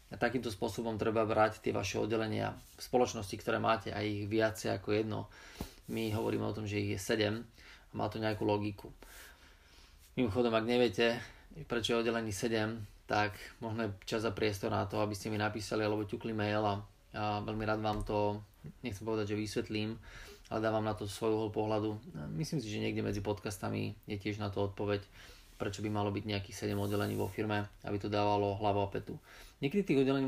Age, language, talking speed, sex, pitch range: 20-39, Slovak, 190 wpm, male, 105-115 Hz